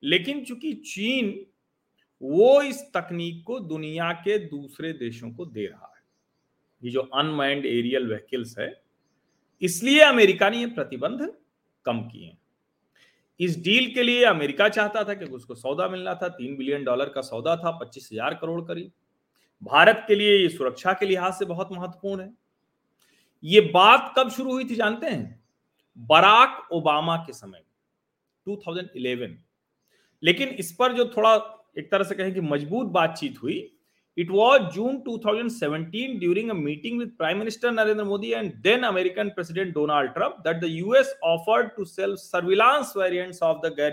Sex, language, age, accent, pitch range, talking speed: male, Hindi, 40-59, native, 140-215 Hz, 145 wpm